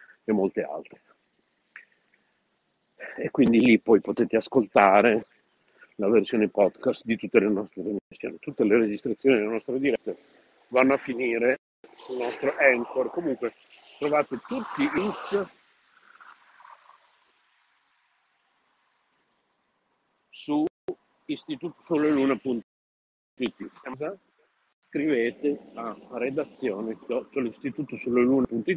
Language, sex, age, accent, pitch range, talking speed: Italian, male, 50-69, native, 110-150 Hz, 85 wpm